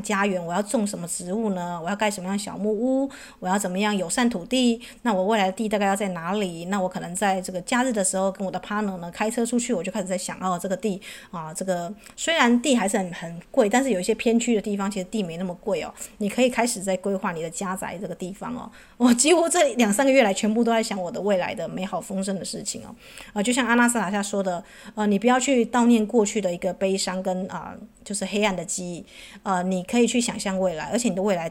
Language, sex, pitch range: Chinese, female, 185-235 Hz